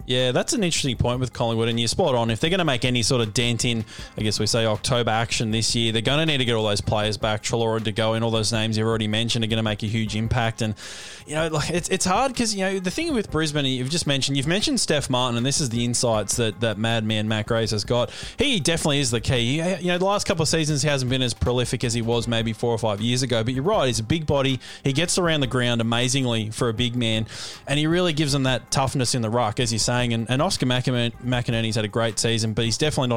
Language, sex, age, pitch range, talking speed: English, male, 20-39, 115-140 Hz, 280 wpm